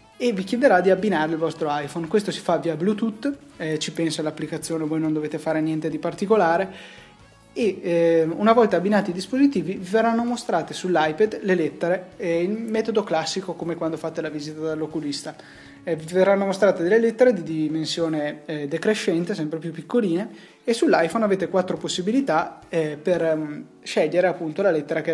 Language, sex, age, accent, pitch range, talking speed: Italian, male, 20-39, native, 155-185 Hz, 175 wpm